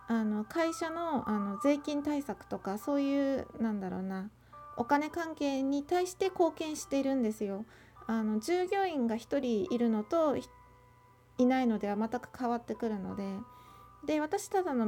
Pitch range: 220-315 Hz